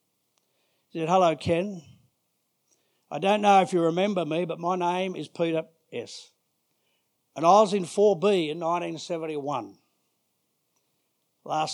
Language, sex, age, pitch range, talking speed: English, male, 60-79, 130-170 Hz, 130 wpm